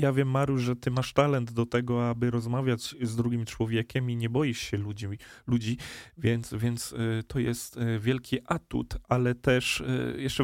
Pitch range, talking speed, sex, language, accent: 120-140 Hz, 165 wpm, male, Polish, native